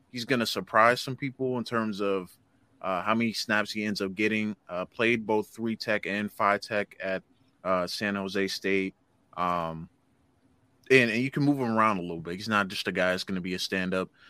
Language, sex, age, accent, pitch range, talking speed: English, male, 20-39, American, 95-115 Hz, 220 wpm